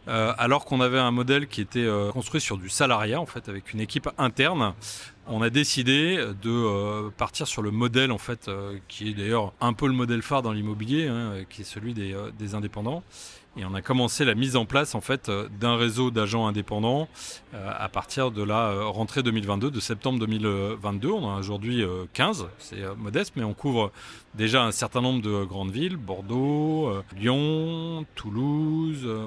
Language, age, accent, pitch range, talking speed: French, 30-49, French, 105-130 Hz, 180 wpm